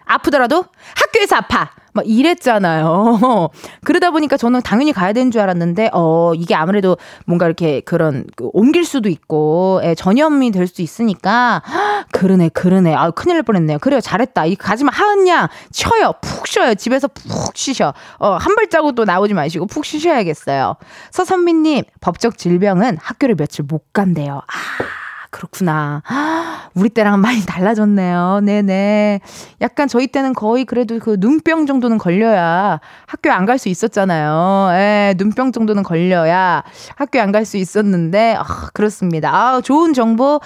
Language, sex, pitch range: Korean, female, 180-275 Hz